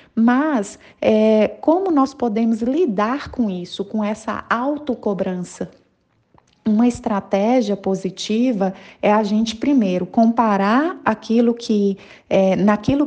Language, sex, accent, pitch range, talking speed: Portuguese, female, Brazilian, 205-250 Hz, 85 wpm